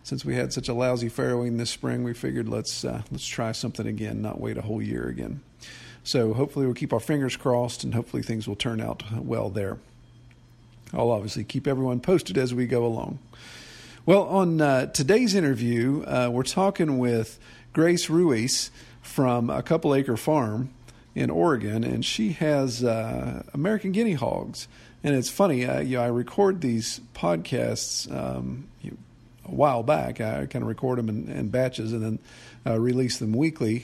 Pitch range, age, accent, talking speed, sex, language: 115-145 Hz, 50-69, American, 180 wpm, male, English